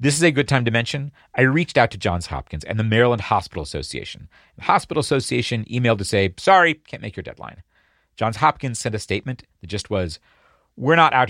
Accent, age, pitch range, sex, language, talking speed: American, 50-69, 95-145 Hz, male, English, 210 wpm